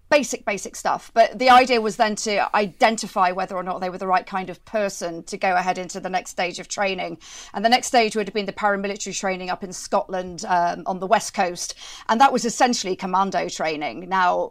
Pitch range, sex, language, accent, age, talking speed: 180-215 Hz, female, English, British, 40-59, 225 wpm